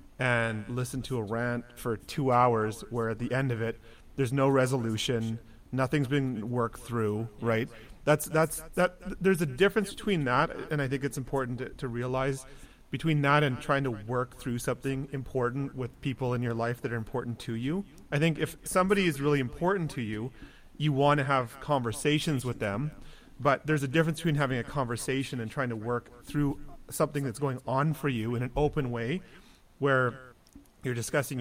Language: English